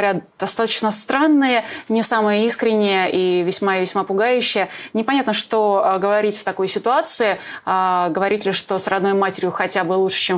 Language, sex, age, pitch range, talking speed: Russian, female, 20-39, 195-230 Hz, 150 wpm